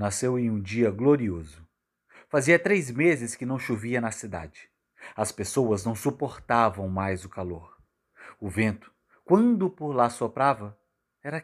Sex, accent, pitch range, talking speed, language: male, Brazilian, 100-140 Hz, 140 wpm, Portuguese